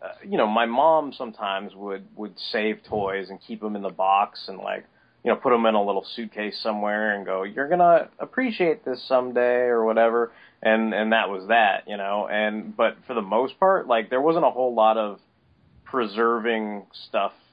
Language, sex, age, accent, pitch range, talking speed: English, male, 30-49, American, 100-120 Hz, 200 wpm